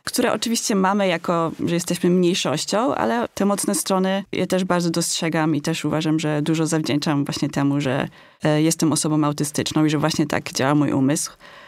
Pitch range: 160-195 Hz